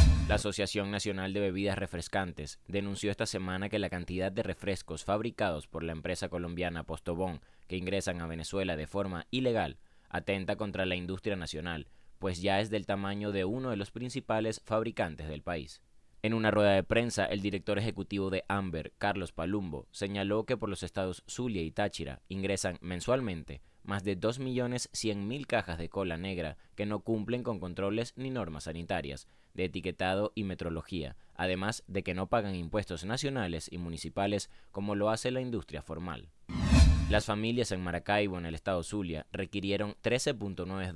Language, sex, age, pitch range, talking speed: Spanish, male, 20-39, 85-105 Hz, 165 wpm